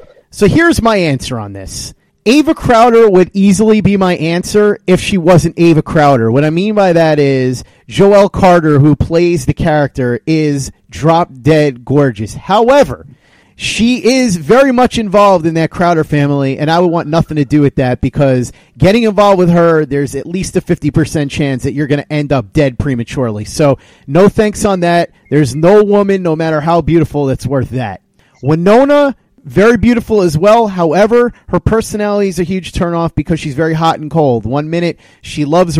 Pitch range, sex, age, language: 145-190 Hz, male, 30-49, English